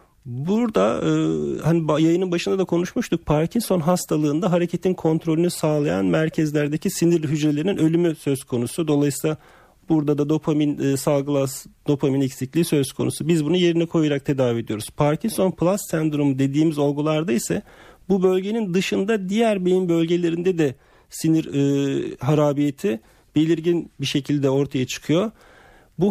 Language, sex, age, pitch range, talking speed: Turkish, male, 40-59, 145-175 Hz, 130 wpm